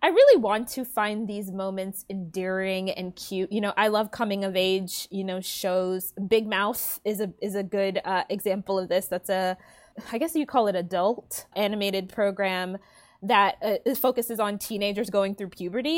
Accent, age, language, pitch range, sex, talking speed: American, 20-39, English, 195-255 Hz, female, 185 wpm